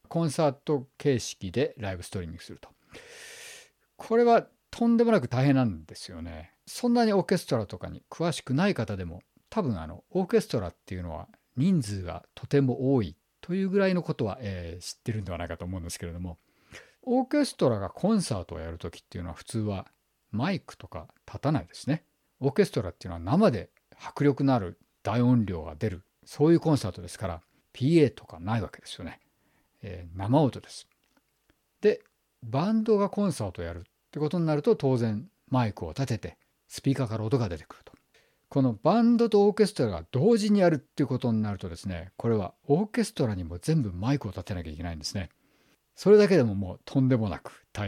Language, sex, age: Japanese, male, 50-69